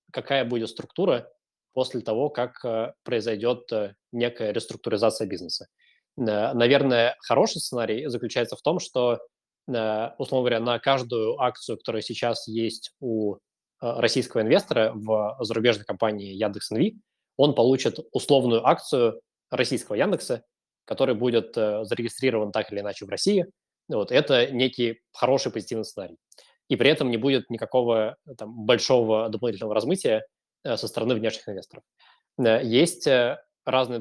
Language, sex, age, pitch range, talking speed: Russian, male, 20-39, 110-135 Hz, 120 wpm